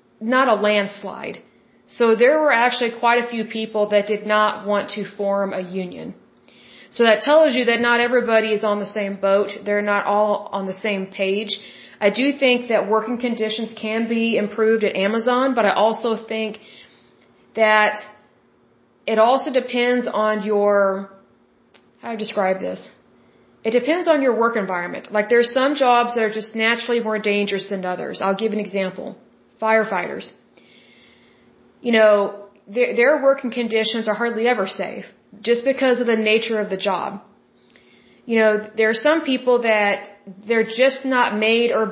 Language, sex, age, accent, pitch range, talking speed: Bengali, female, 30-49, American, 200-235 Hz, 165 wpm